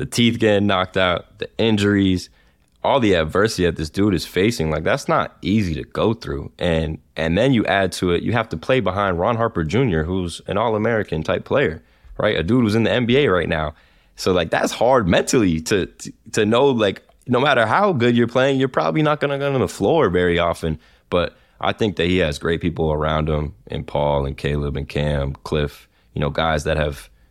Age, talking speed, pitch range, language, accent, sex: 10-29, 215 wpm, 75-90 Hz, English, American, male